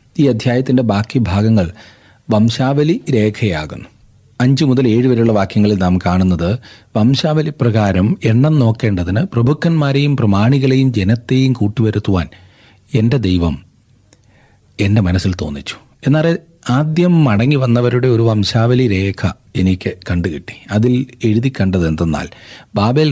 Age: 40-59